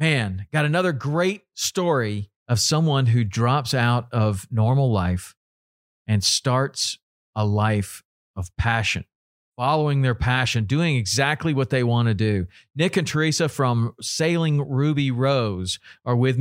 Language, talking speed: English, 140 wpm